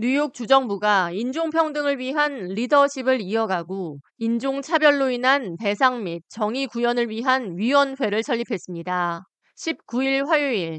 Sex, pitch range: female, 200-275 Hz